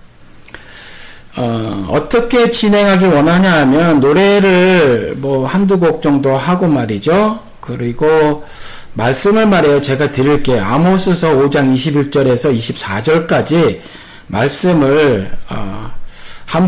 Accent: native